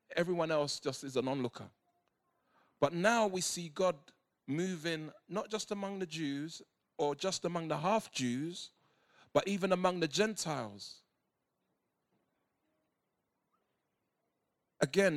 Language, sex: English, male